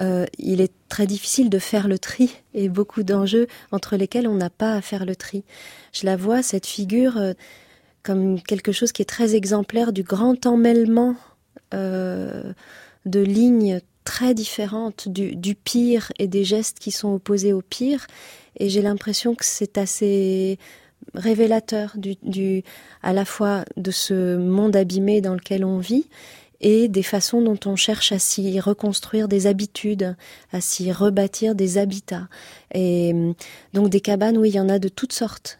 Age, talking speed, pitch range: 30-49, 170 wpm, 190-220 Hz